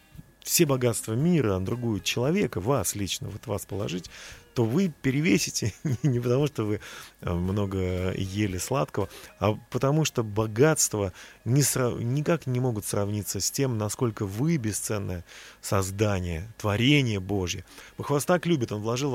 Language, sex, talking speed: Russian, male, 140 wpm